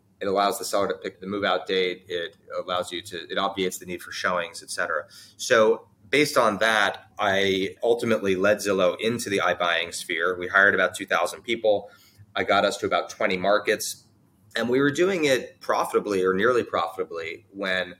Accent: American